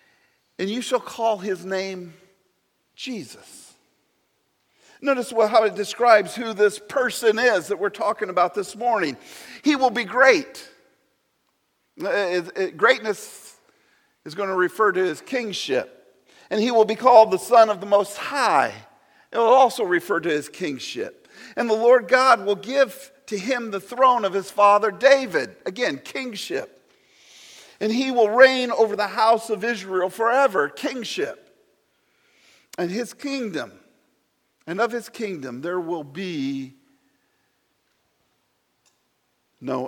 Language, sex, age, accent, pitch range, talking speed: English, male, 50-69, American, 200-250 Hz, 135 wpm